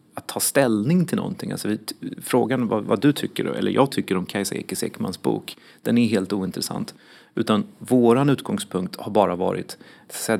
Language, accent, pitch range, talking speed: Swedish, native, 100-120 Hz, 165 wpm